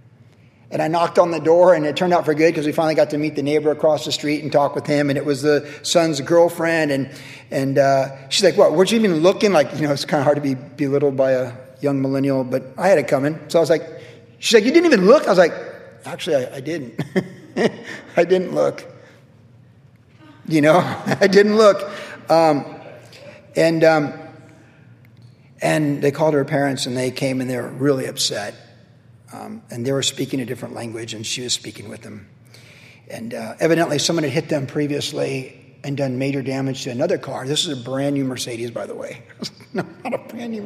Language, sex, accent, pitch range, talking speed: English, male, American, 135-165 Hz, 215 wpm